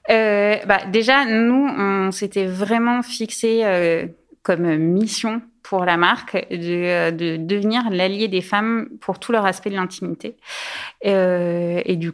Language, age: French, 20-39